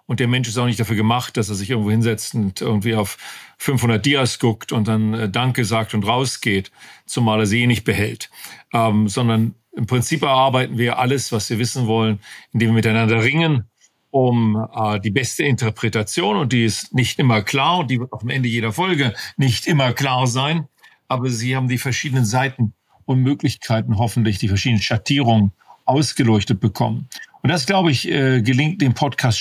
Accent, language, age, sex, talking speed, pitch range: German, German, 40-59, male, 185 wpm, 115-135 Hz